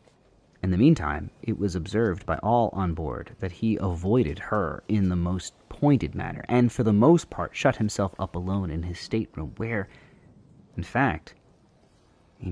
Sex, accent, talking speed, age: male, American, 170 wpm, 30-49